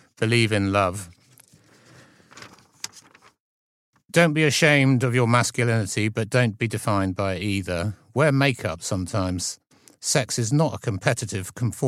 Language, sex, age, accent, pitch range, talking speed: English, male, 50-69, British, 100-125 Hz, 115 wpm